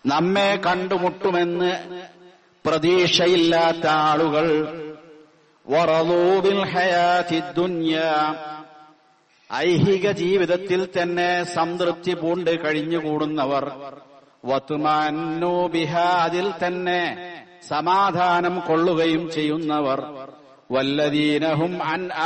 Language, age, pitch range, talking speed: Malayalam, 60-79, 155-175 Hz, 55 wpm